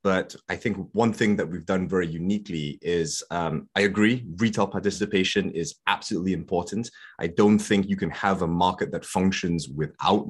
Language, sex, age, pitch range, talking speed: English, male, 20-39, 80-105 Hz, 175 wpm